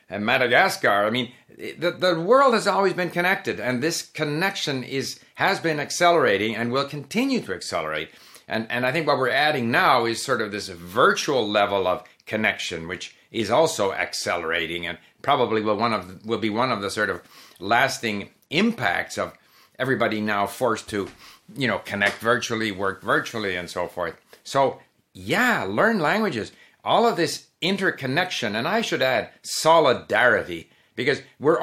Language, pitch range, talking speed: English, 105-150 Hz, 165 wpm